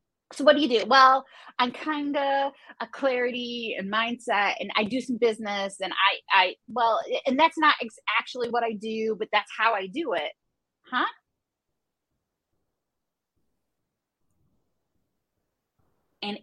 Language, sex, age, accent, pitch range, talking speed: English, female, 30-49, American, 190-250 Hz, 140 wpm